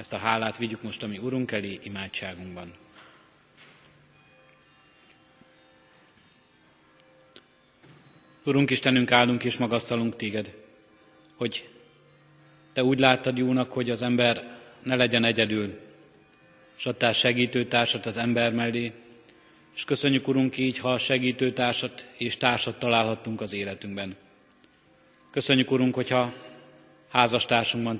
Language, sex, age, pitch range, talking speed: Hungarian, male, 30-49, 110-125 Hz, 100 wpm